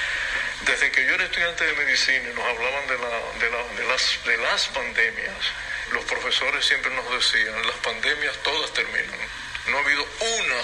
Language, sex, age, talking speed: Spanish, male, 60-79, 150 wpm